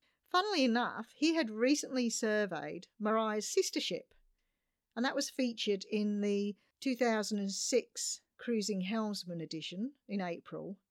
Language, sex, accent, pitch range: English, female, British, 180-240 Hz